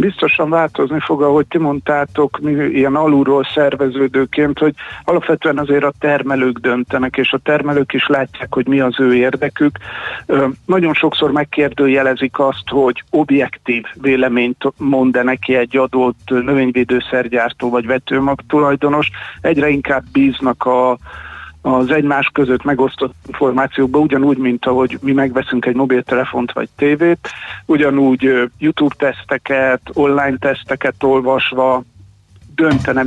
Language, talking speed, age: Hungarian, 120 wpm, 50-69